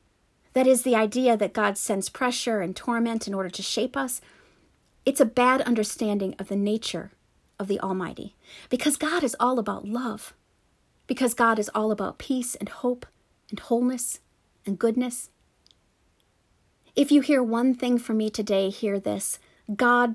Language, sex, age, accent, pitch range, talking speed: English, female, 40-59, American, 210-250 Hz, 160 wpm